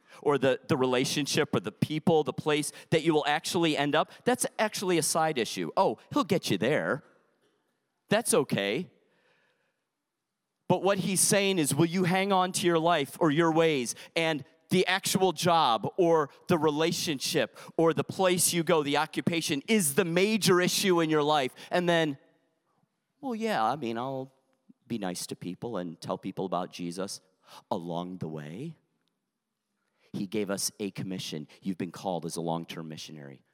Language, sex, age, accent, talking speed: English, male, 40-59, American, 170 wpm